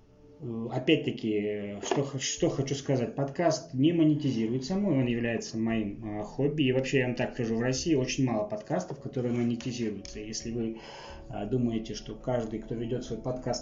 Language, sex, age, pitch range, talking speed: Russian, male, 20-39, 110-140 Hz, 150 wpm